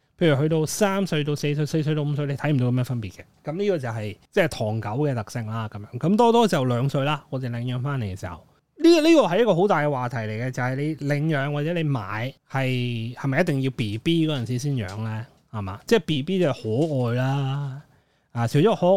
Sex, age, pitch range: male, 20-39, 115-150 Hz